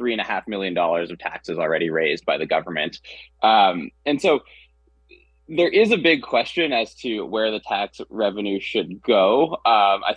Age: 20-39